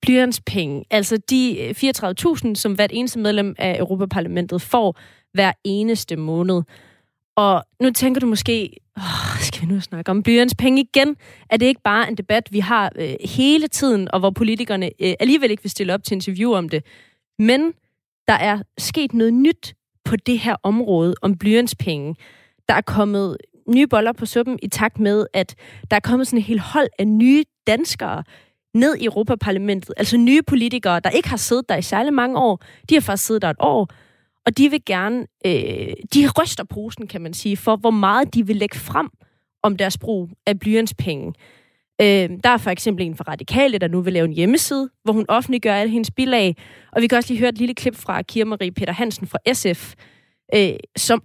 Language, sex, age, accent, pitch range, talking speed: Danish, female, 30-49, native, 185-245 Hz, 195 wpm